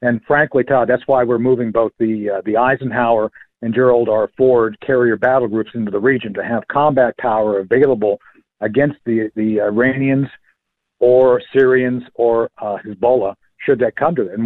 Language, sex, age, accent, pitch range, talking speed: English, male, 50-69, American, 110-135 Hz, 175 wpm